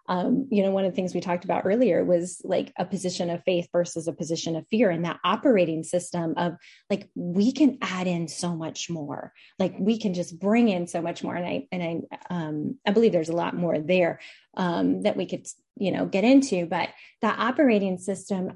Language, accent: English, American